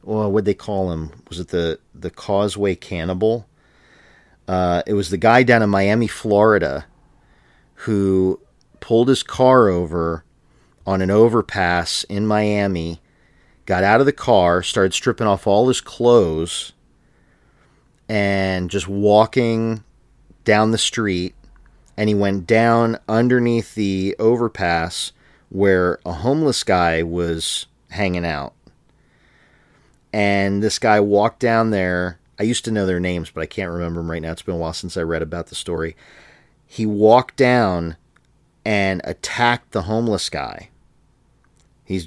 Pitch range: 90-115 Hz